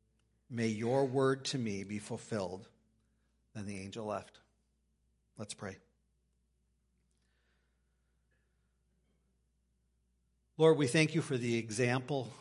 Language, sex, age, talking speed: English, male, 50-69, 95 wpm